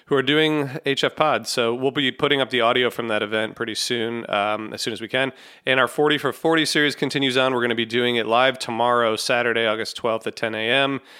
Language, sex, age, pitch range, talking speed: English, male, 30-49, 110-135 Hz, 240 wpm